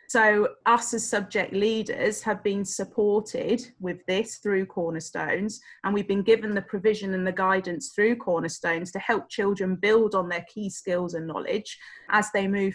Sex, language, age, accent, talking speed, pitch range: female, English, 30-49, British, 170 wpm, 195-230 Hz